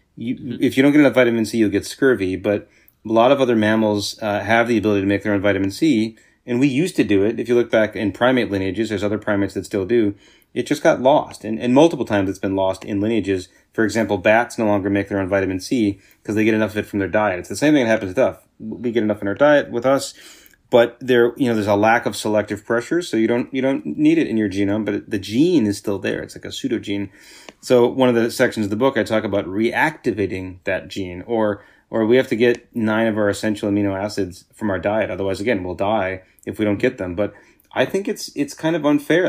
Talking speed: 260 wpm